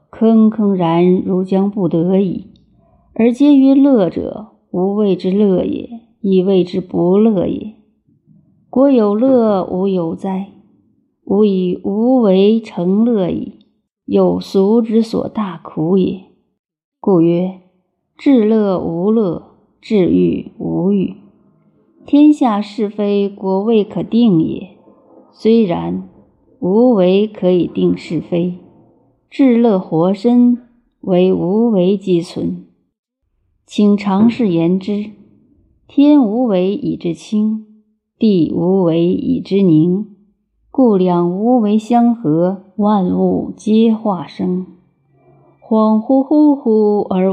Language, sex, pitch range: Chinese, female, 180-225 Hz